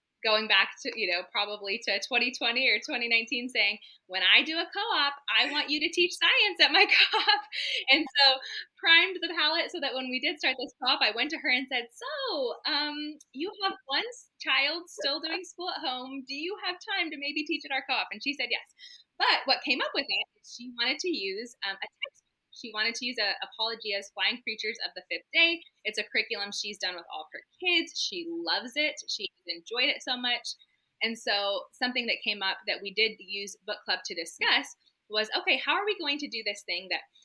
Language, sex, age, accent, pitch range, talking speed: English, female, 20-39, American, 215-320 Hz, 220 wpm